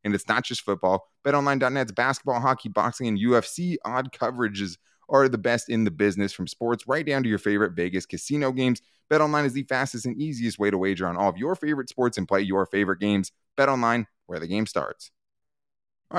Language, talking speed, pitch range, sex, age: English, 205 wpm, 100-120 Hz, male, 20-39